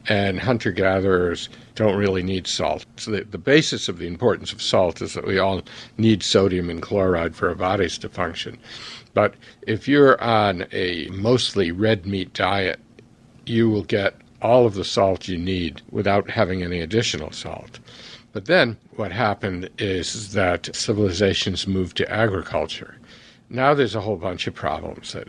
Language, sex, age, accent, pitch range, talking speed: English, male, 60-79, American, 90-115 Hz, 160 wpm